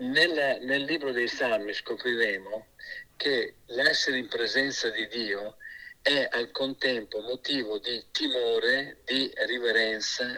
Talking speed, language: 115 wpm, Italian